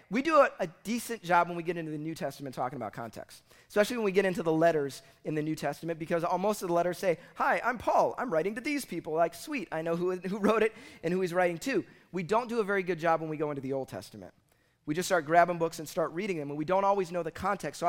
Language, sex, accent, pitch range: English, male, American, 165-210 Hz